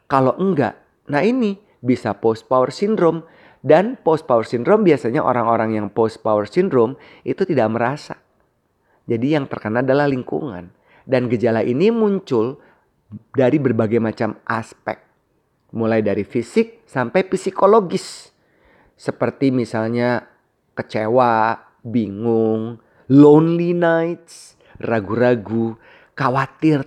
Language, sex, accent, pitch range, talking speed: Indonesian, male, native, 115-160 Hz, 105 wpm